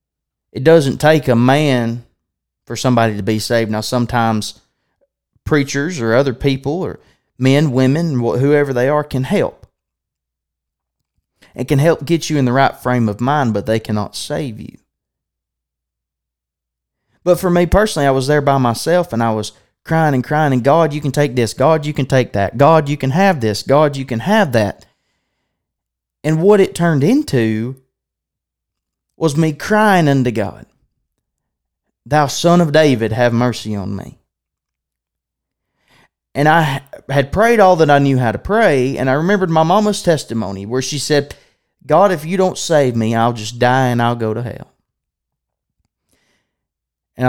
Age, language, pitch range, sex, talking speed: 20-39, English, 100-150 Hz, male, 165 wpm